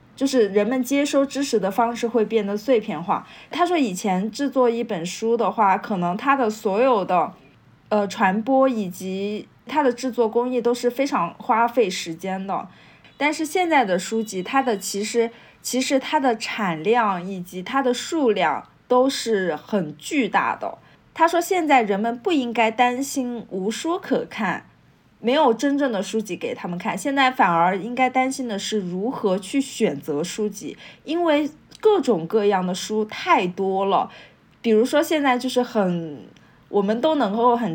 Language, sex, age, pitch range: Chinese, female, 20-39, 195-255 Hz